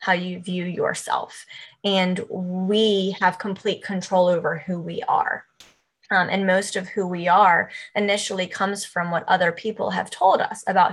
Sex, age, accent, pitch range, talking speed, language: female, 20-39, American, 175-205 Hz, 165 wpm, English